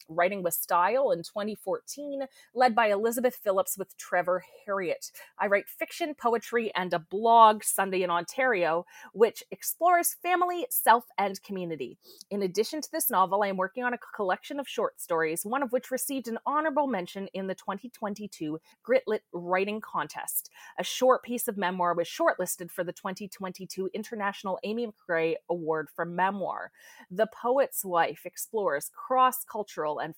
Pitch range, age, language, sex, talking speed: 180-255 Hz, 30-49, English, female, 155 wpm